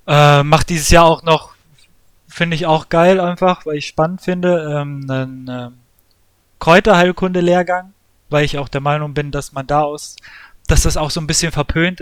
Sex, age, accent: male, 20-39, German